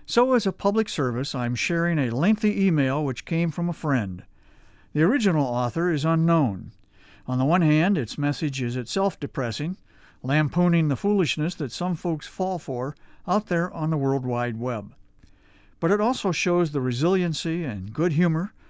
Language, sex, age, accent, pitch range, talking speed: English, male, 50-69, American, 125-170 Hz, 170 wpm